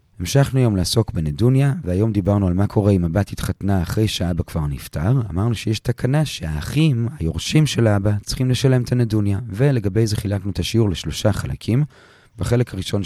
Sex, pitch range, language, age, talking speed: male, 85-120 Hz, Hebrew, 30-49, 165 wpm